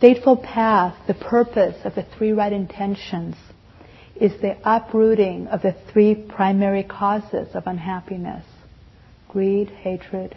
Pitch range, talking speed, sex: 180-220 Hz, 120 wpm, female